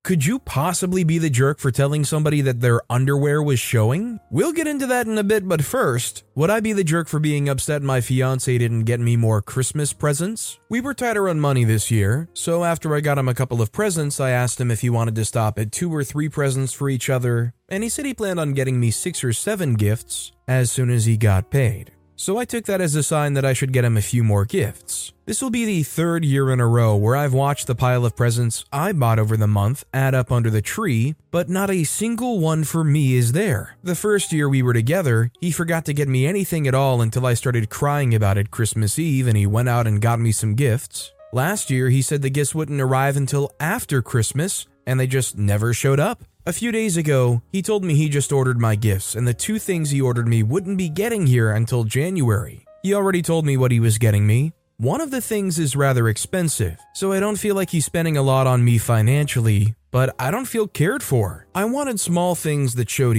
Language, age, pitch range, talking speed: English, 20-39, 120-165 Hz, 240 wpm